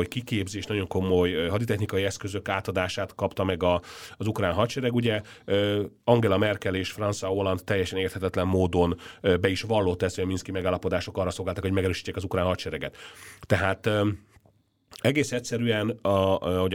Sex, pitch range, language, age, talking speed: male, 95-115 Hz, Hungarian, 30-49, 145 wpm